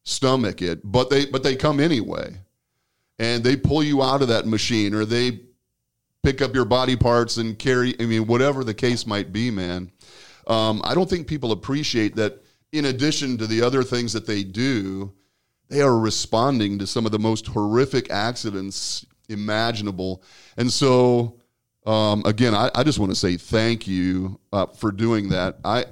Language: English